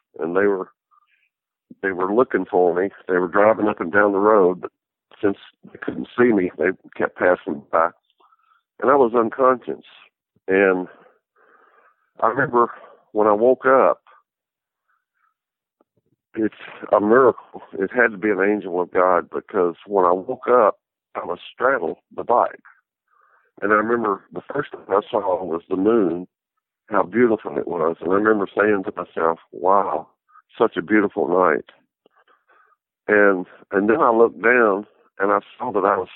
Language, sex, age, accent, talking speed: English, male, 50-69, American, 160 wpm